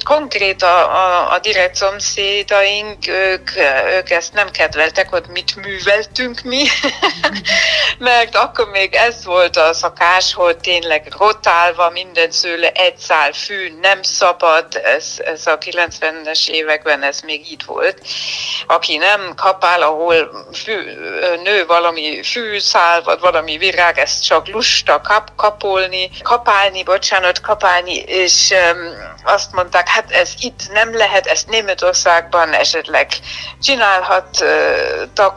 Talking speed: 125 wpm